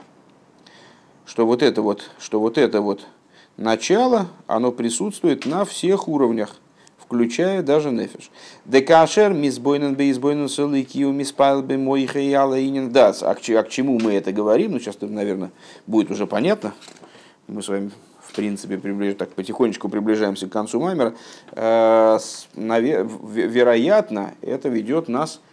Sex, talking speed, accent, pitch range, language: male, 110 wpm, native, 105-130 Hz, Russian